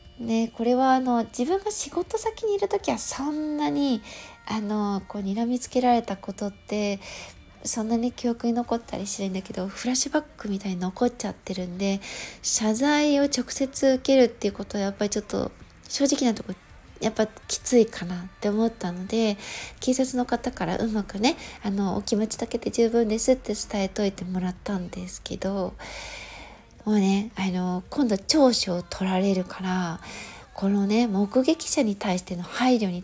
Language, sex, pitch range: Japanese, female, 195-255 Hz